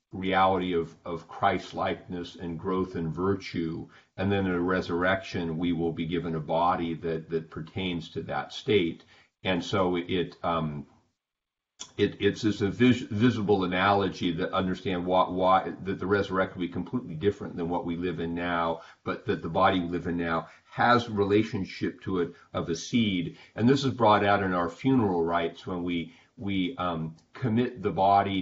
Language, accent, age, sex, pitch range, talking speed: English, American, 40-59, male, 85-100 Hz, 175 wpm